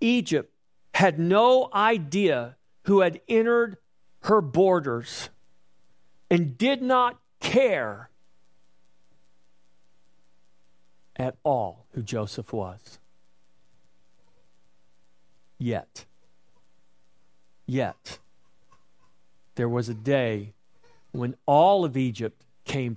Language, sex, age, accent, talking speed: English, male, 50-69, American, 75 wpm